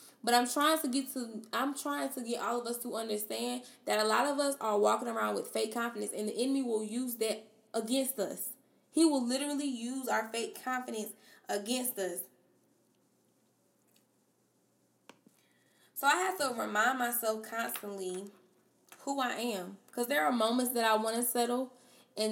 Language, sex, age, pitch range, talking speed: English, female, 10-29, 220-275 Hz, 170 wpm